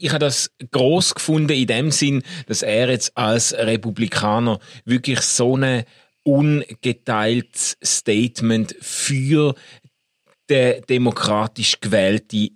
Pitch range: 115-155 Hz